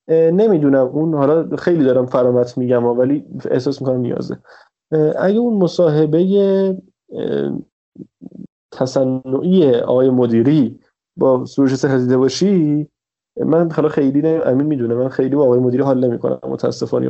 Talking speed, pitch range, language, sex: 120 wpm, 130-170 Hz, Persian, male